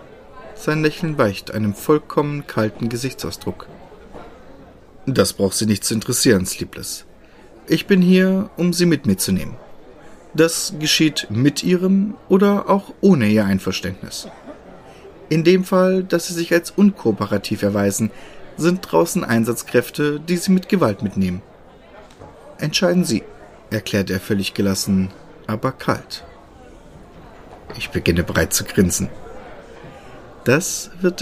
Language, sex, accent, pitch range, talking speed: German, male, German, 100-160 Hz, 125 wpm